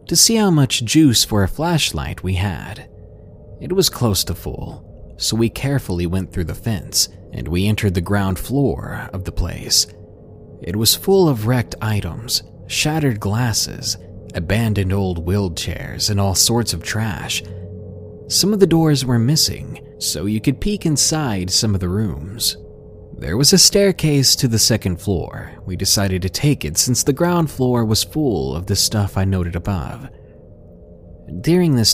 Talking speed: 165 wpm